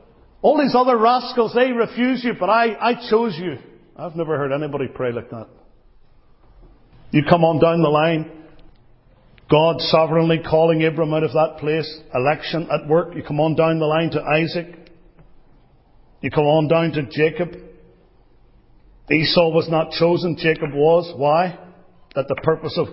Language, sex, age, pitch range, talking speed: English, male, 50-69, 150-210 Hz, 160 wpm